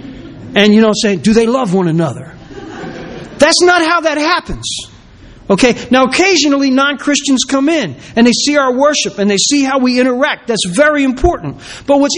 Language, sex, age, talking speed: English, male, 40-59, 175 wpm